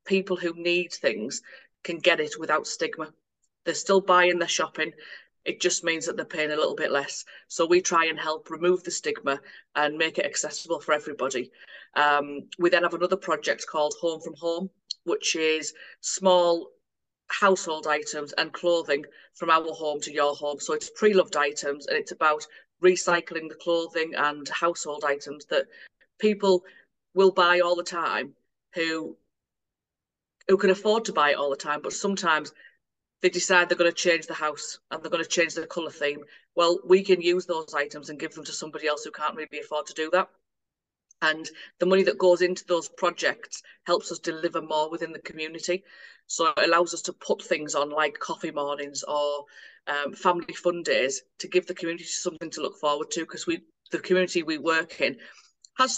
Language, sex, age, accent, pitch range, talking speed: English, female, 30-49, British, 150-180 Hz, 190 wpm